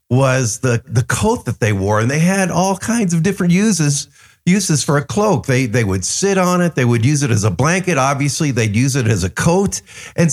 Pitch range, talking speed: 120-175 Hz, 230 wpm